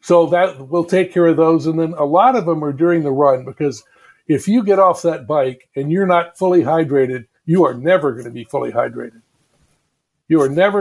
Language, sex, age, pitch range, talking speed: English, male, 60-79, 140-175 Hz, 220 wpm